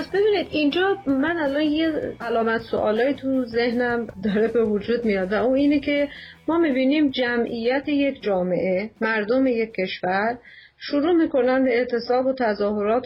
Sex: female